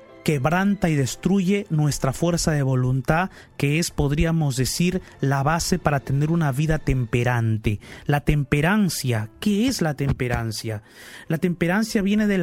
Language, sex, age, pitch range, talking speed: Spanish, male, 30-49, 145-200 Hz, 135 wpm